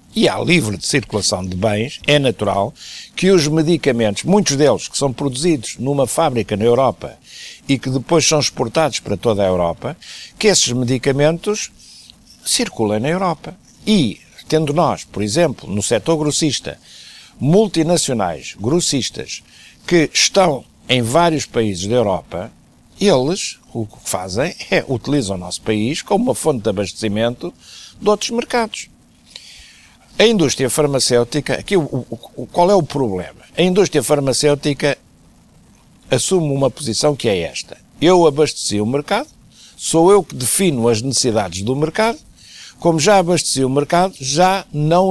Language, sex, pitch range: Portuguese, male, 120-170 Hz